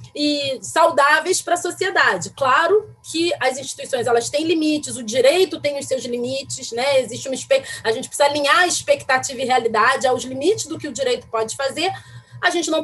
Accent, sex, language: Brazilian, female, Portuguese